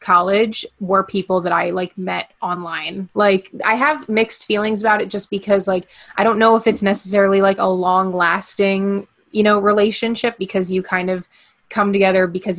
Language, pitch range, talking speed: English, 180-205 Hz, 180 wpm